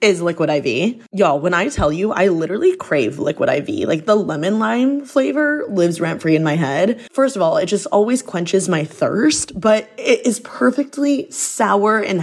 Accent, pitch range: American, 170-225 Hz